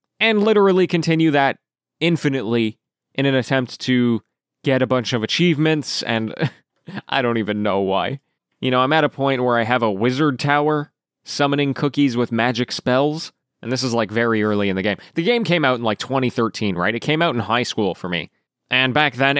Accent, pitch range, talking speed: American, 110-145 Hz, 200 wpm